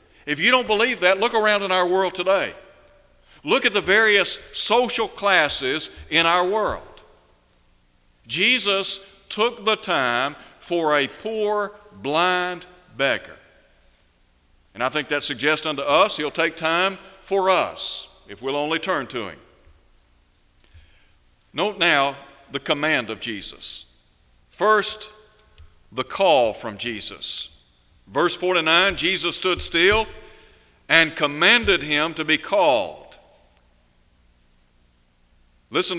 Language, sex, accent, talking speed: English, male, American, 115 wpm